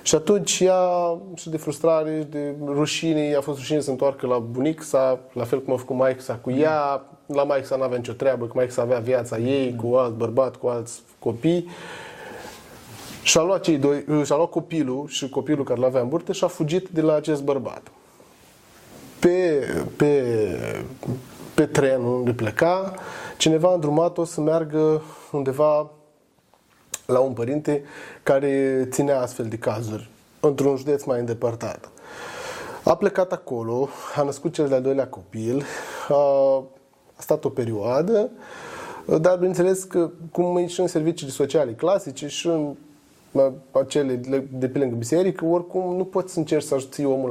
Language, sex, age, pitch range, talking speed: Romanian, male, 20-39, 130-175 Hz, 160 wpm